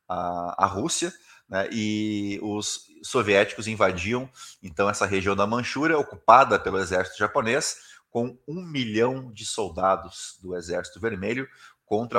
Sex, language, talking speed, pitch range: male, Portuguese, 125 wpm, 95-105 Hz